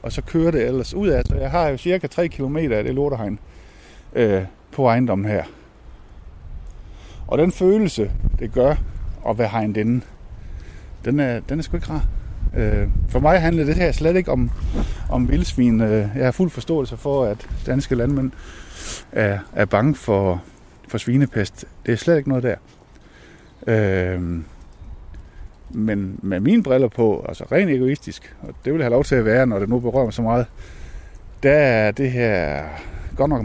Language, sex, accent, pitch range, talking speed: Danish, male, native, 90-135 Hz, 175 wpm